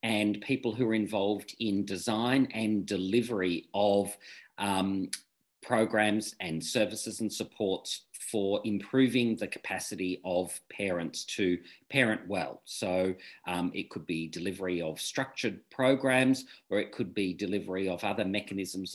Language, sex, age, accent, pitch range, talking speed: English, male, 40-59, Australian, 95-125 Hz, 135 wpm